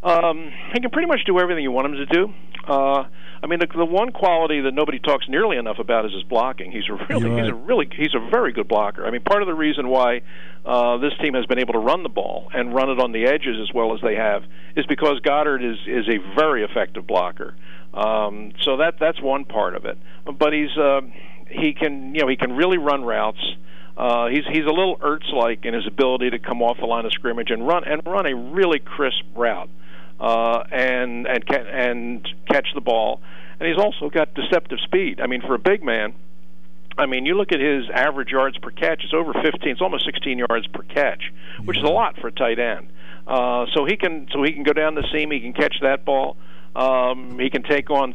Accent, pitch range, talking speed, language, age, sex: American, 115-155 Hz, 235 wpm, English, 50-69, male